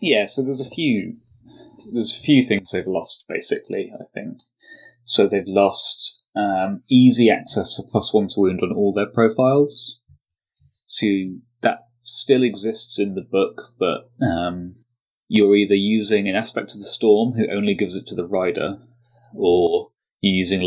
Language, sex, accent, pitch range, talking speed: English, male, British, 100-135 Hz, 165 wpm